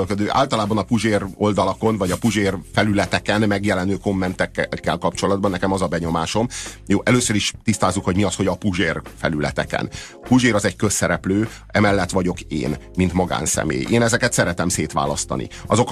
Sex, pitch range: male, 95-115 Hz